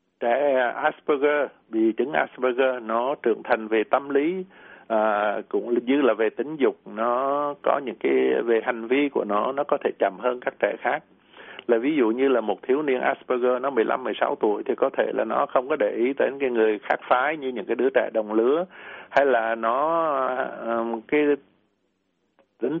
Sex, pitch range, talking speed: male, 110-145 Hz, 190 wpm